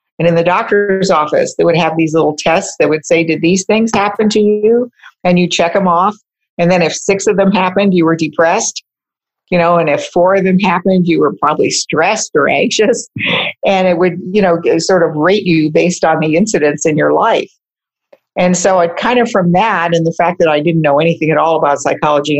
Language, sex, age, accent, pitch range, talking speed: English, female, 50-69, American, 160-200 Hz, 225 wpm